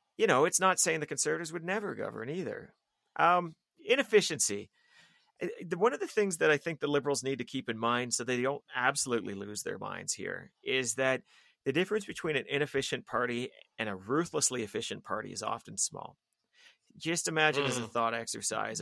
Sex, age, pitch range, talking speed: male, 30-49, 115-150 Hz, 180 wpm